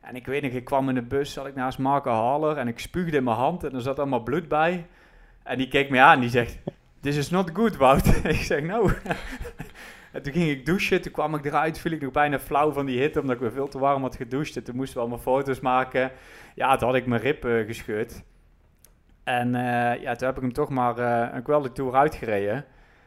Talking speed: 250 wpm